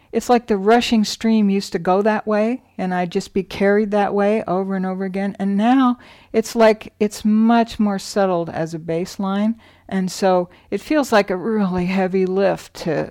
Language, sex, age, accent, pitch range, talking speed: English, female, 60-79, American, 160-220 Hz, 190 wpm